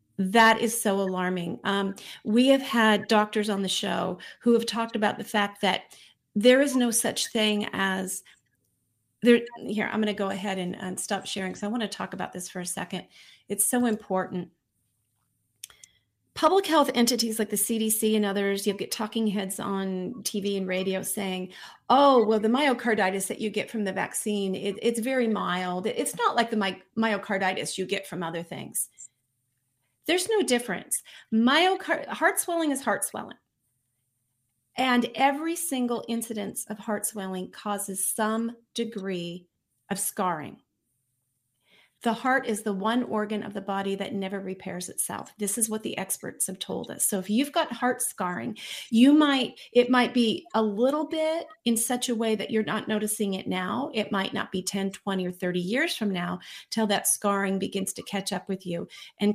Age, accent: 40-59, American